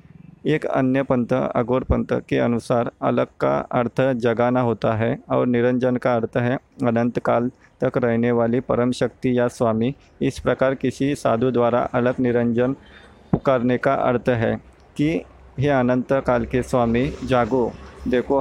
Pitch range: 120-135 Hz